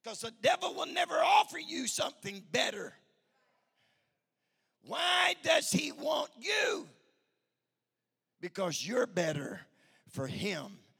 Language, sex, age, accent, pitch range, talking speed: English, male, 50-69, American, 120-195 Hz, 105 wpm